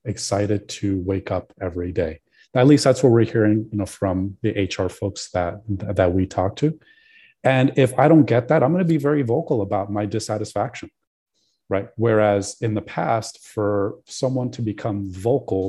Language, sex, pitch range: English, male, 100-120 Hz